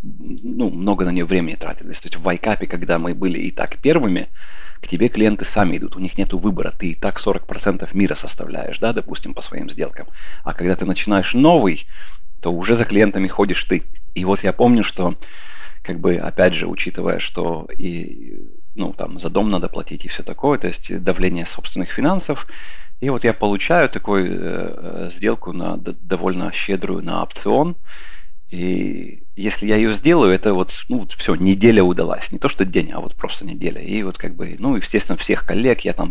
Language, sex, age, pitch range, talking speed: Russian, male, 30-49, 90-105 Hz, 195 wpm